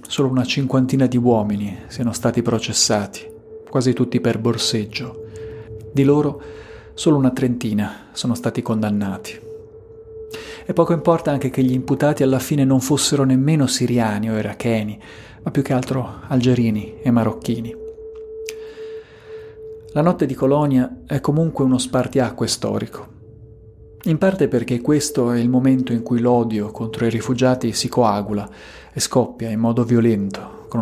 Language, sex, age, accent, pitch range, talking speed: Italian, male, 40-59, native, 110-140 Hz, 140 wpm